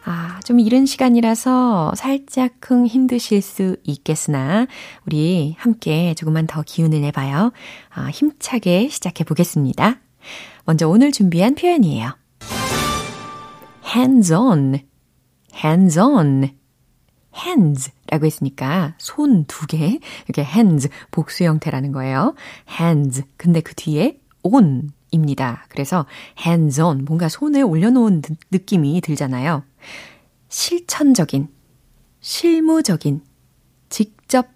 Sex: female